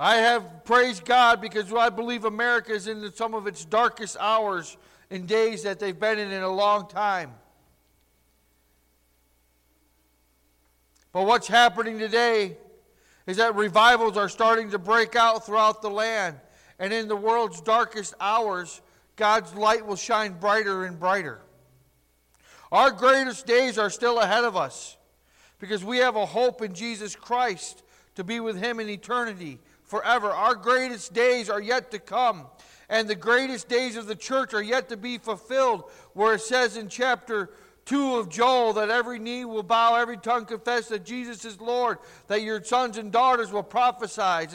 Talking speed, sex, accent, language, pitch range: 165 wpm, male, American, English, 205-245 Hz